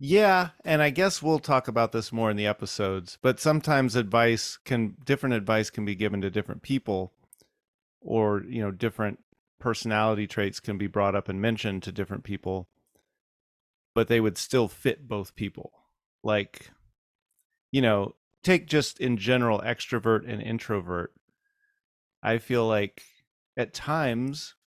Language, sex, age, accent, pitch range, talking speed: English, male, 30-49, American, 105-130 Hz, 150 wpm